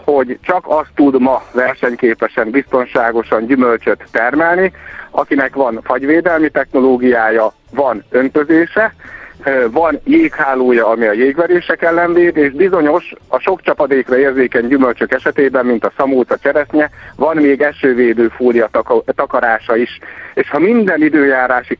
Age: 60-79